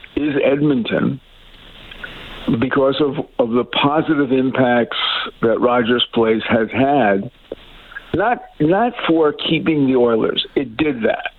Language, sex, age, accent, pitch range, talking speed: English, male, 60-79, American, 120-150 Hz, 115 wpm